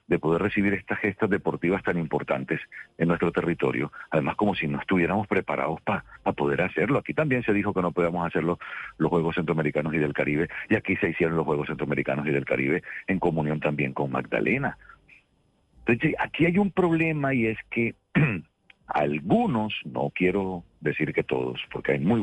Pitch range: 85-125 Hz